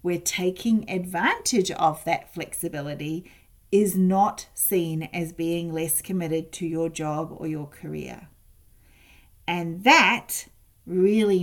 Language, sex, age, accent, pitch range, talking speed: English, female, 40-59, Australian, 150-180 Hz, 115 wpm